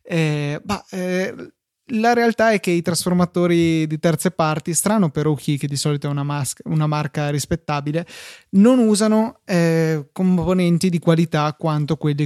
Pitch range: 150-180 Hz